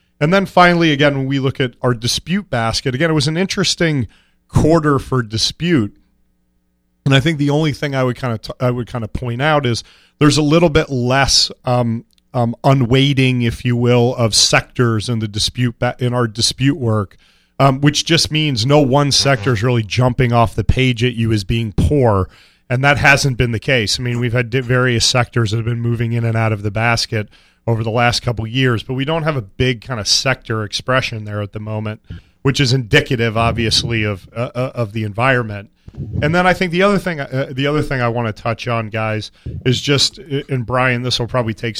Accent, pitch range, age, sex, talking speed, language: American, 115-135 Hz, 30-49, male, 220 wpm, English